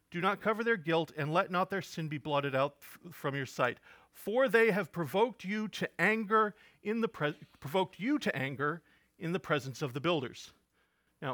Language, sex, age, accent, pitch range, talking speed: English, male, 40-59, American, 135-170 Hz, 200 wpm